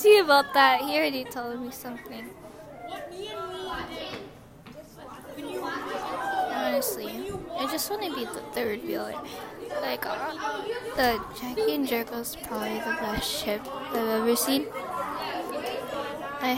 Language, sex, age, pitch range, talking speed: English, female, 10-29, 225-275 Hz, 120 wpm